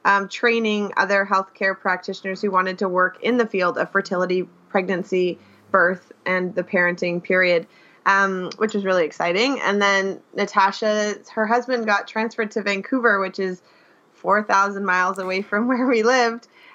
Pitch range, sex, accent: 190-220 Hz, female, American